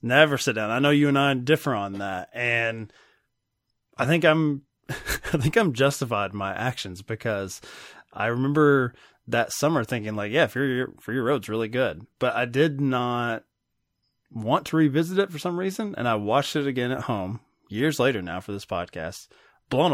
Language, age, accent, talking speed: English, 20-39, American, 185 wpm